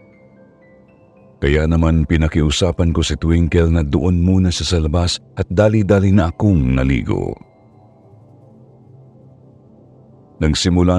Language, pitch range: Filipino, 75-105 Hz